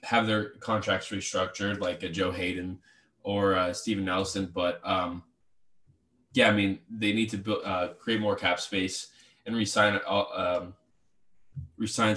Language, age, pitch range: English, 20-39, 95-105 Hz